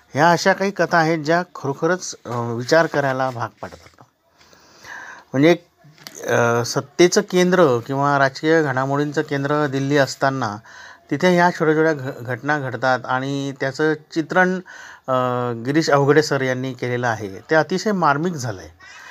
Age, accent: 50-69, native